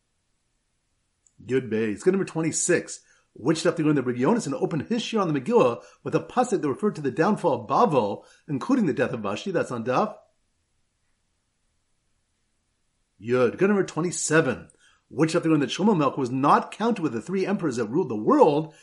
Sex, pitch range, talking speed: male, 120-185 Hz, 190 wpm